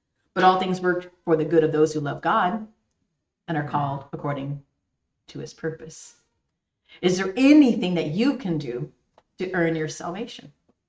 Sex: female